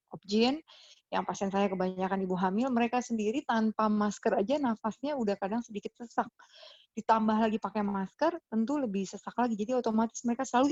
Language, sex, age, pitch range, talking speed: Indonesian, female, 20-39, 200-240 Hz, 160 wpm